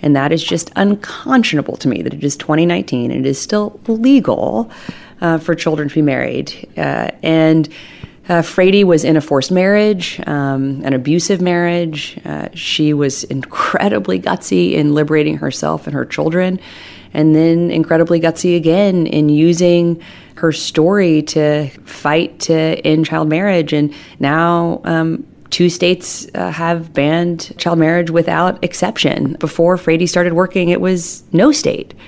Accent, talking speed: American, 150 wpm